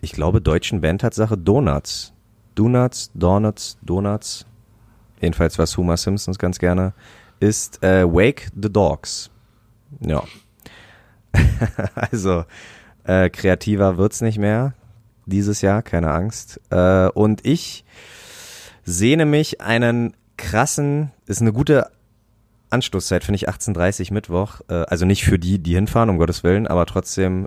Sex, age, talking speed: male, 30-49, 125 wpm